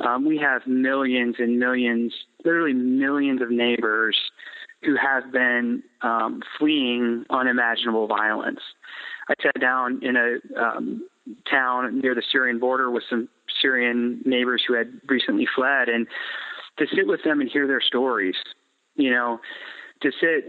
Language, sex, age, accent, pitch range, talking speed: English, male, 30-49, American, 120-165 Hz, 145 wpm